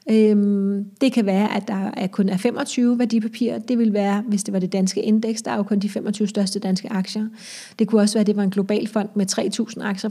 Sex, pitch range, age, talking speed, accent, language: female, 195-220 Hz, 30-49, 235 wpm, native, Danish